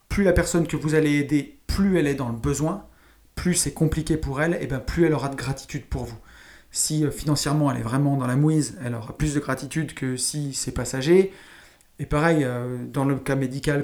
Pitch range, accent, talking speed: 135-170 Hz, French, 215 wpm